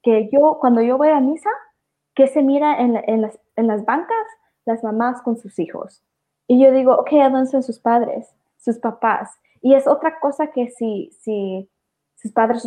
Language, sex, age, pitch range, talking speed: English, female, 20-39, 210-265 Hz, 200 wpm